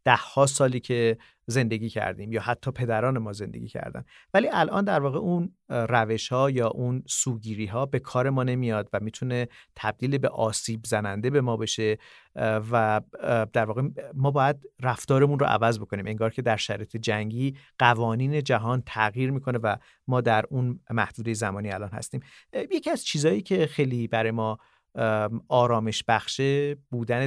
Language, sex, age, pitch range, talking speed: Persian, male, 40-59, 110-135 Hz, 155 wpm